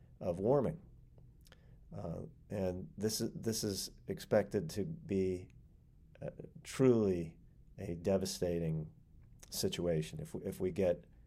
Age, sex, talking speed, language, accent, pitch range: 40-59, male, 110 wpm, English, American, 90-105 Hz